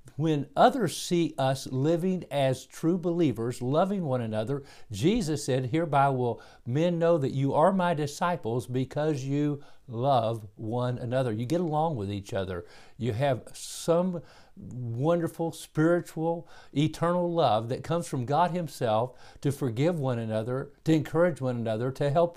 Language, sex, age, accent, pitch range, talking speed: English, male, 50-69, American, 125-160 Hz, 150 wpm